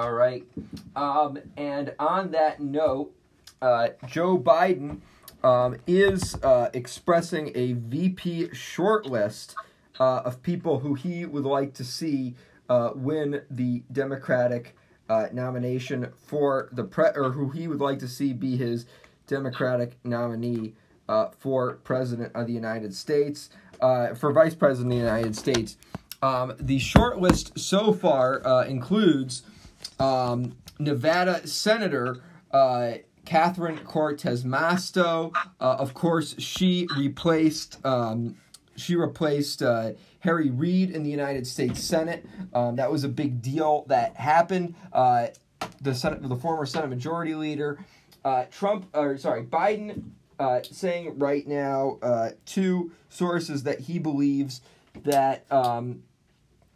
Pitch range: 125-165 Hz